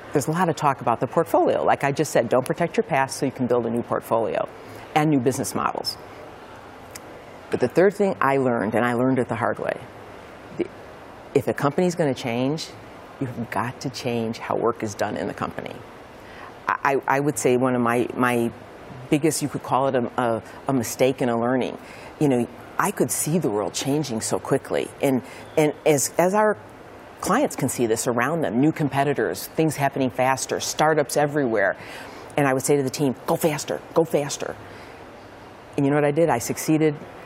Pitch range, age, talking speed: 125-170 Hz, 50-69, 200 wpm